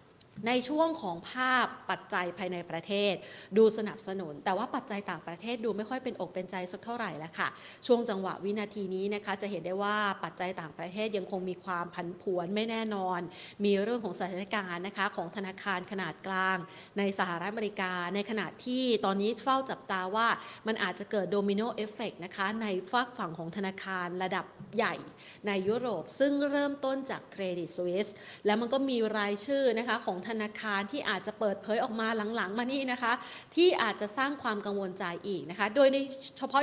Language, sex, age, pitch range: Thai, female, 30-49, 185-225 Hz